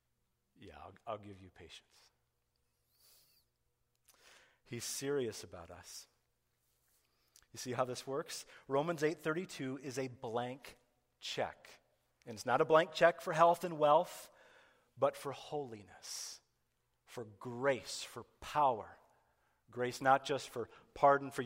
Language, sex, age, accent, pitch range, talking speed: English, male, 40-59, American, 115-165 Hz, 125 wpm